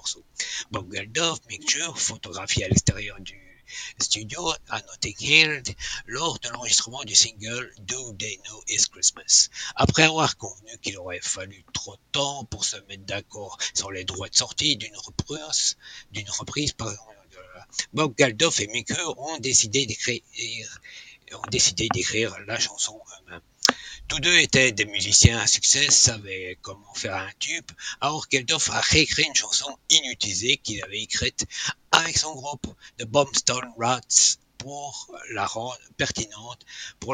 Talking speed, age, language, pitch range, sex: 150 wpm, 60-79, French, 105-135 Hz, male